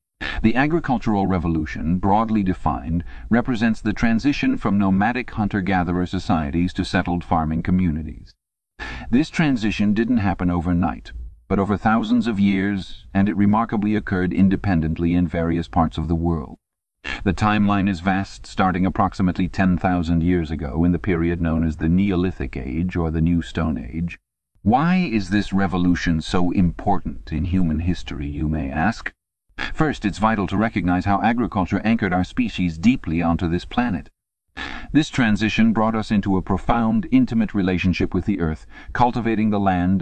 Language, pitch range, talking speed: English, 85-105 Hz, 150 wpm